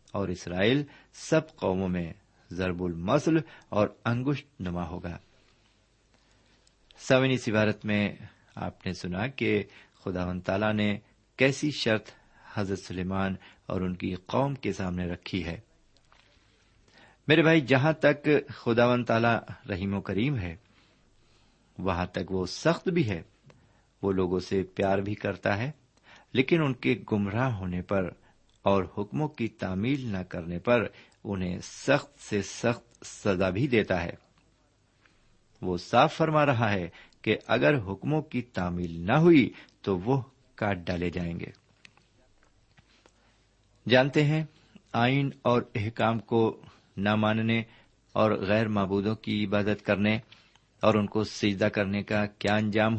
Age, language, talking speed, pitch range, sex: 50-69, Urdu, 130 wpm, 95-120 Hz, male